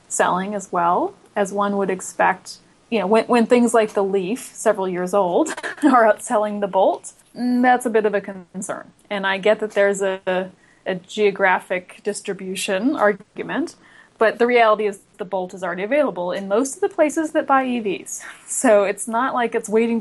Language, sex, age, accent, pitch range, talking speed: English, female, 20-39, American, 195-240 Hz, 185 wpm